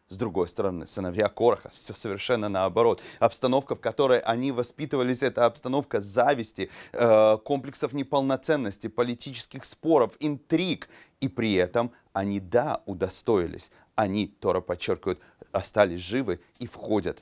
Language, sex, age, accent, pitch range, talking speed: Russian, male, 30-49, native, 105-135 Hz, 120 wpm